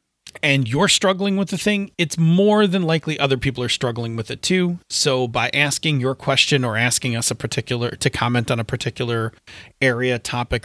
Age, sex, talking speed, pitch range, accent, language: 30-49, male, 190 wpm, 120-160 Hz, American, English